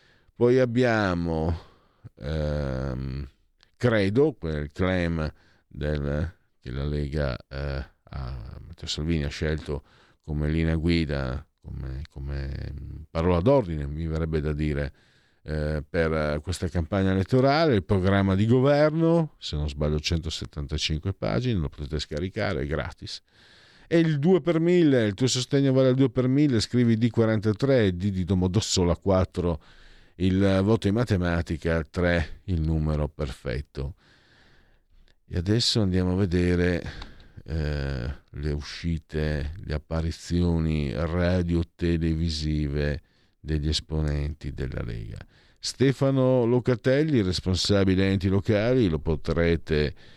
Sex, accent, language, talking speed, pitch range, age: male, native, Italian, 115 wpm, 75-100 Hz, 50-69